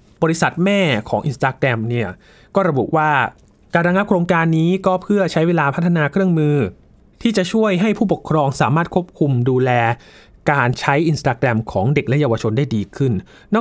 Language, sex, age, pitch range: Thai, male, 20-39, 115-165 Hz